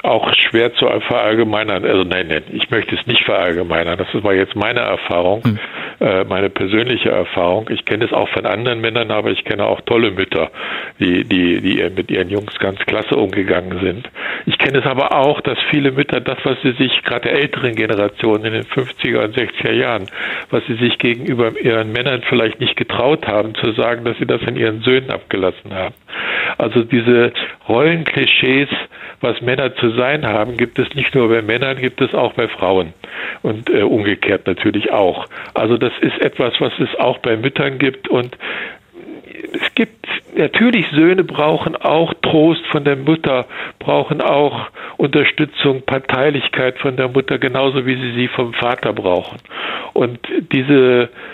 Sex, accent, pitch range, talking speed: male, German, 110-140 Hz, 170 wpm